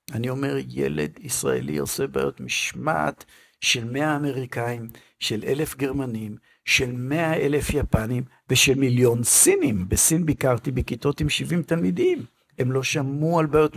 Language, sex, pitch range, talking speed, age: Hebrew, male, 105-145 Hz, 135 wpm, 50-69